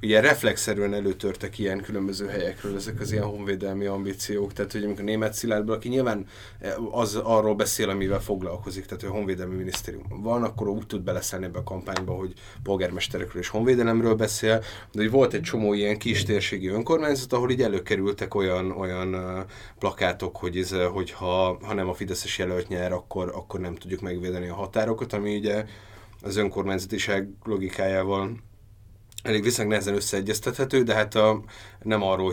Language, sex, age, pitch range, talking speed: Hungarian, male, 30-49, 95-110 Hz, 155 wpm